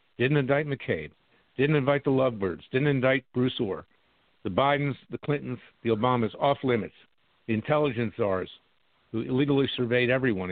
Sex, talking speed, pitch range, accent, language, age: male, 145 wpm, 110-140 Hz, American, English, 50-69